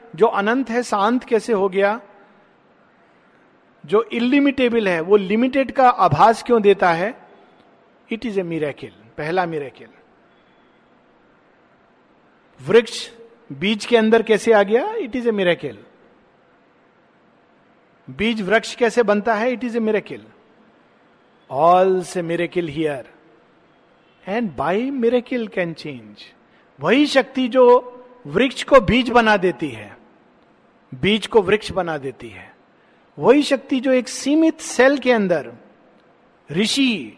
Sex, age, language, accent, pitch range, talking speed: male, 50-69, Hindi, native, 190-250 Hz, 125 wpm